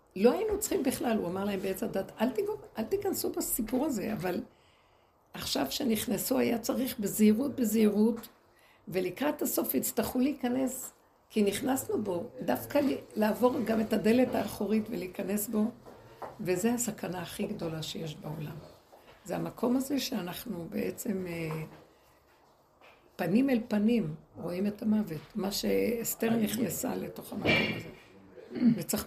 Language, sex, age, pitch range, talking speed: Hebrew, female, 60-79, 190-245 Hz, 125 wpm